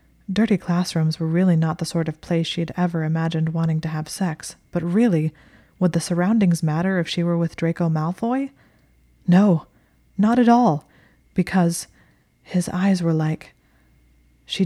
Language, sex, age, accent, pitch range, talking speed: English, female, 20-39, American, 155-175 Hz, 155 wpm